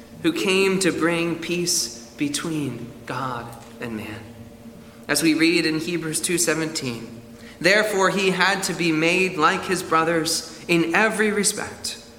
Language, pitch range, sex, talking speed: English, 130-195 Hz, male, 135 wpm